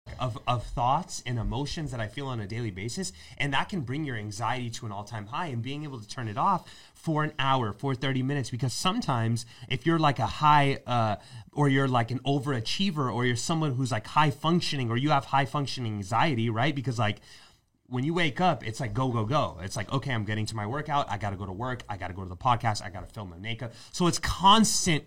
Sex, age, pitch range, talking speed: male, 30-49, 120-155 Hz, 240 wpm